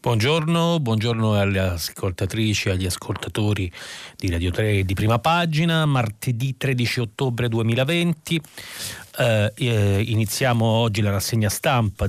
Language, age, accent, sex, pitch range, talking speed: Italian, 40-59, native, male, 95-115 Hz, 115 wpm